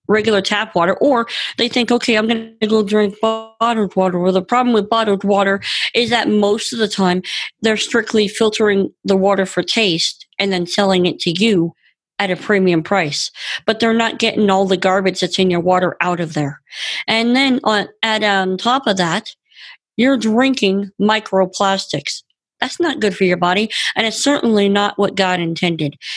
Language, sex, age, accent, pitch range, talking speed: English, female, 40-59, American, 185-230 Hz, 185 wpm